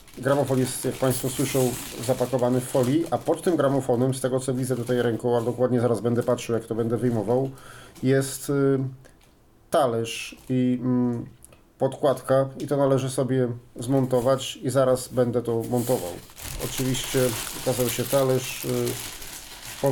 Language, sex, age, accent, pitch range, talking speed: Polish, male, 40-59, native, 125-145 Hz, 140 wpm